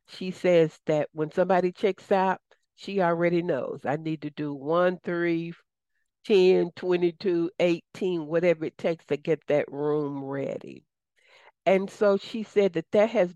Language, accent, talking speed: English, American, 155 wpm